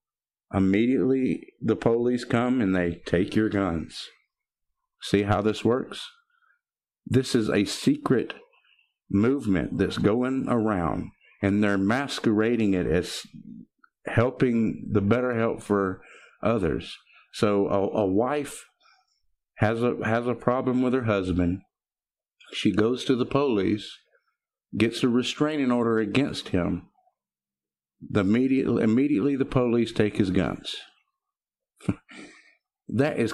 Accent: American